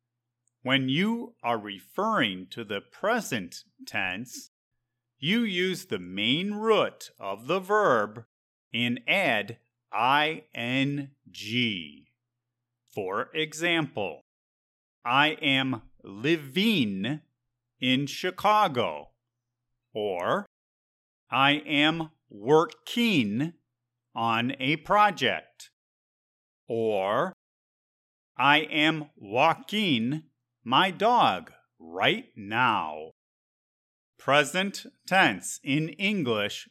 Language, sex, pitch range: English, male, 120-170 Hz